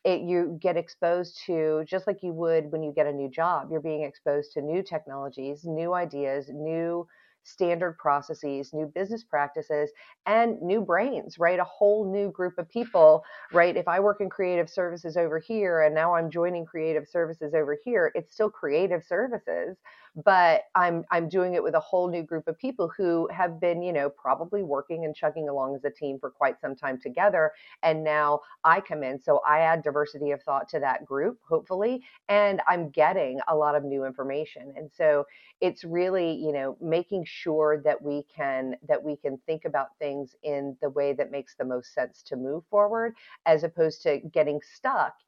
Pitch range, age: 145-175 Hz, 40-59